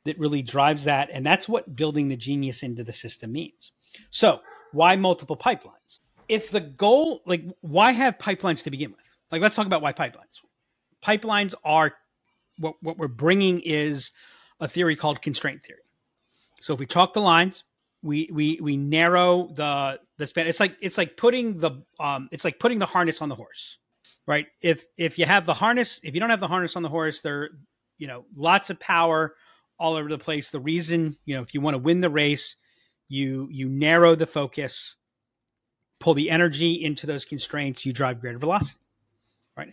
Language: English